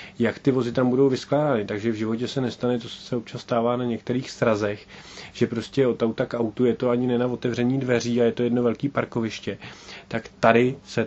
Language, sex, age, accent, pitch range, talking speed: Czech, male, 30-49, native, 115-130 Hz, 215 wpm